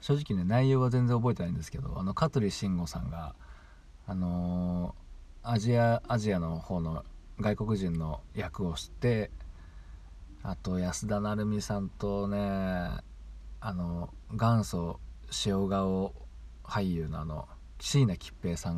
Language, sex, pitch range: Japanese, male, 75-105 Hz